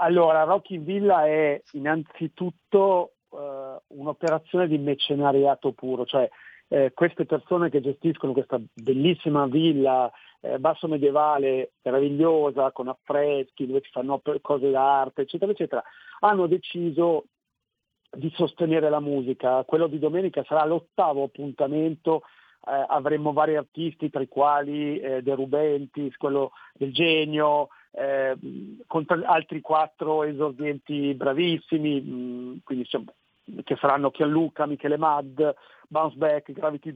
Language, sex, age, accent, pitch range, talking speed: Italian, male, 50-69, native, 140-170 Hz, 120 wpm